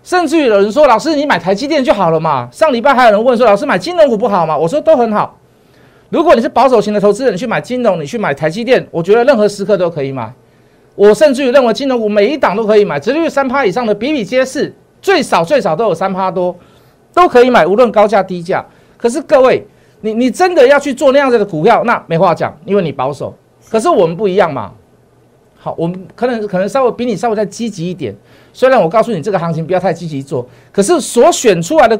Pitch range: 180-270 Hz